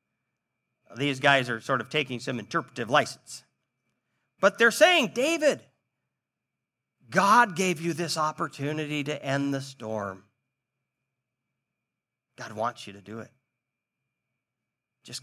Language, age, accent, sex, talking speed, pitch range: English, 50-69, American, male, 115 wpm, 125-195 Hz